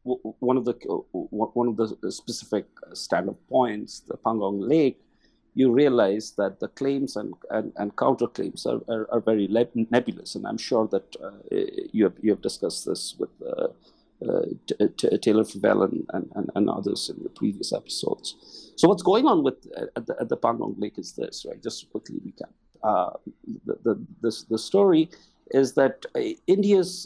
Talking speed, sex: 175 wpm, male